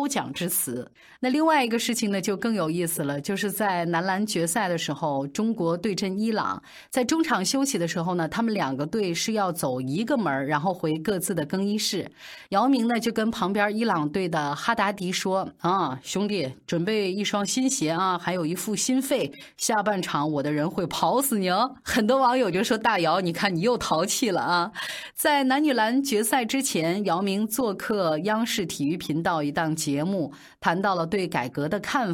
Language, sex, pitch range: Chinese, female, 165-235 Hz